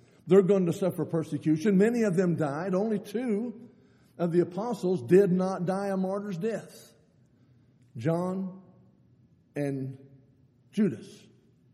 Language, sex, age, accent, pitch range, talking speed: English, male, 60-79, American, 135-200 Hz, 120 wpm